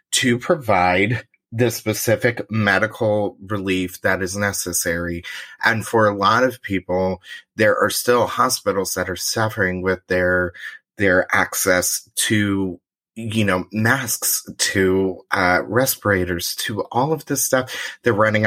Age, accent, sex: 30-49, American, male